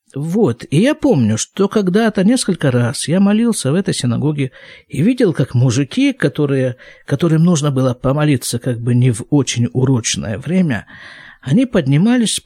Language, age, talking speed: Russian, 50-69, 145 wpm